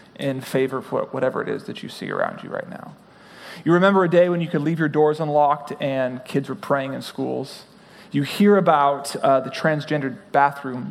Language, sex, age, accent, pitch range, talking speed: English, male, 30-49, American, 140-190 Hz, 205 wpm